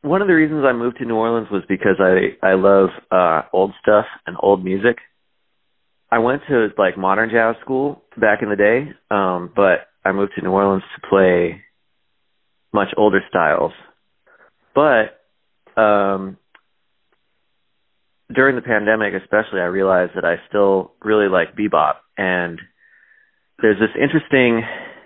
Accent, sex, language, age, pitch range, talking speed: American, male, English, 30-49, 95-125 Hz, 145 wpm